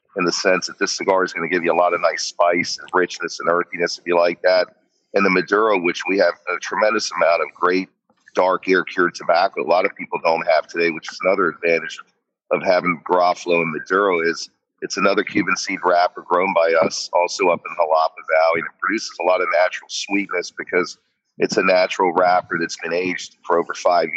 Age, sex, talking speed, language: 40-59, male, 220 wpm, English